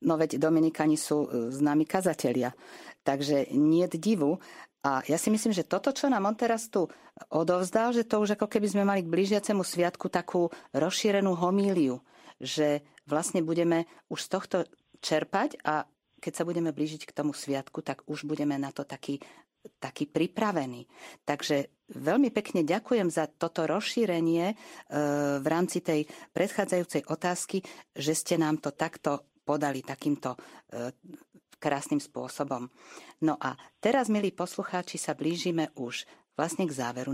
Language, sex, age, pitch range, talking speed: Slovak, female, 50-69, 145-190 Hz, 145 wpm